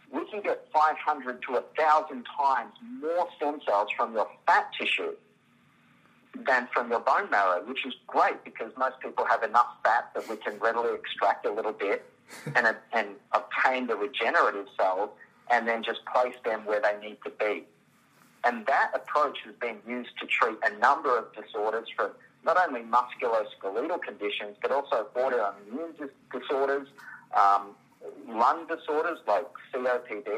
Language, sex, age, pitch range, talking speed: English, male, 50-69, 105-155 Hz, 155 wpm